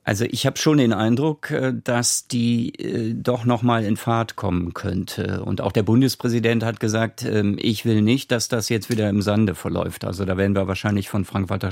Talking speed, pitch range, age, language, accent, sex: 195 wpm, 100-120 Hz, 50-69, German, German, male